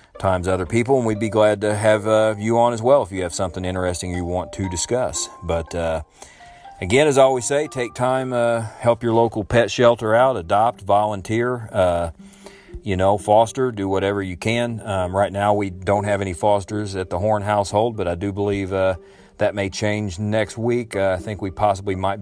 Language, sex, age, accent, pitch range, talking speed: English, male, 40-59, American, 95-110 Hz, 210 wpm